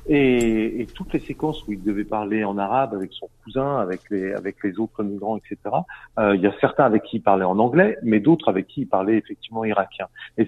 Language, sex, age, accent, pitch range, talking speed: French, male, 40-59, French, 110-155 Hz, 235 wpm